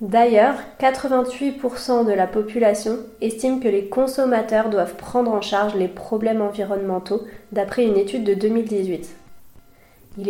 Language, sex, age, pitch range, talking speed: French, female, 30-49, 205-240 Hz, 130 wpm